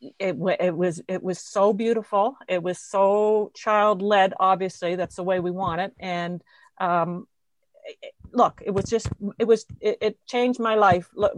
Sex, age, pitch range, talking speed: female, 40-59, 180-215 Hz, 180 wpm